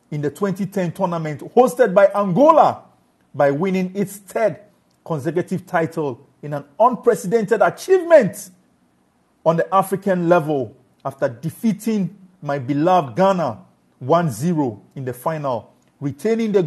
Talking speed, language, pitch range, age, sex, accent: 115 wpm, English, 155-220 Hz, 50-69, male, Nigerian